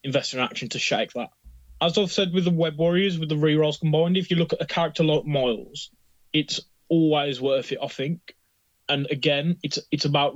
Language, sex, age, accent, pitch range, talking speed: English, male, 20-39, British, 125-155 Hz, 210 wpm